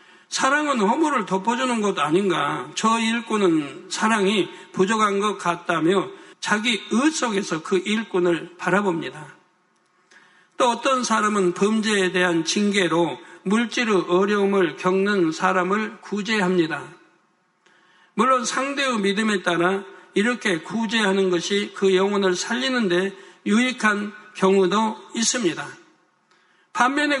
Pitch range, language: 180-215 Hz, Korean